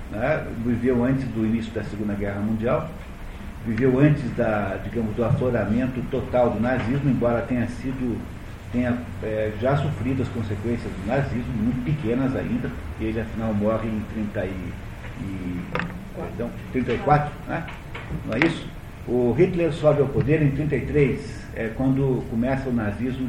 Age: 50-69